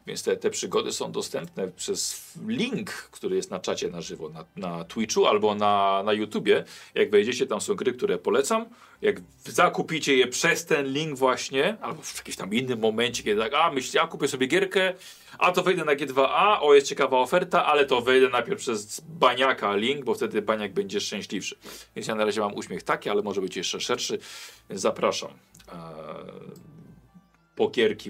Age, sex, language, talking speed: 40-59, male, Polish, 180 wpm